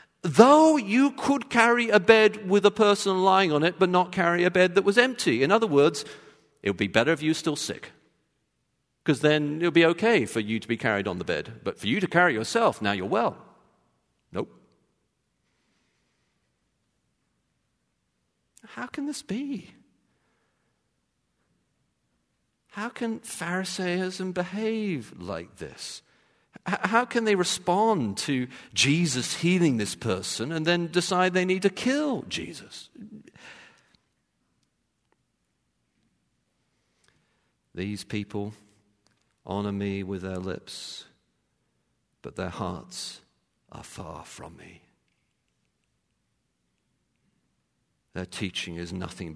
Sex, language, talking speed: male, English, 125 wpm